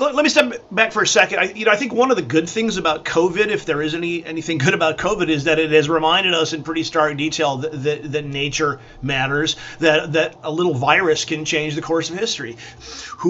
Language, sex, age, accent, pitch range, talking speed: English, male, 30-49, American, 145-170 Hz, 245 wpm